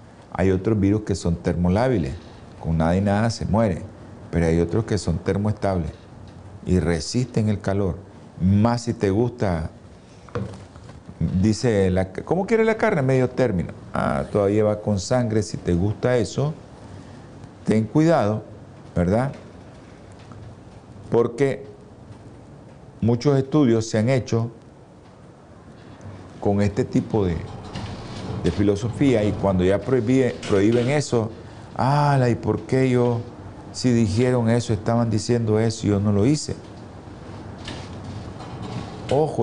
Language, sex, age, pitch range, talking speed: Spanish, male, 50-69, 95-120 Hz, 120 wpm